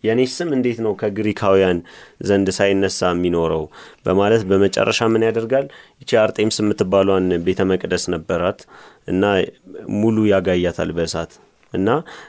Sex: male